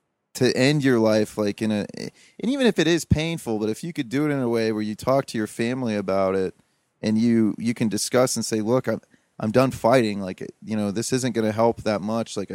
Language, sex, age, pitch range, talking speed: English, male, 30-49, 110-135 Hz, 255 wpm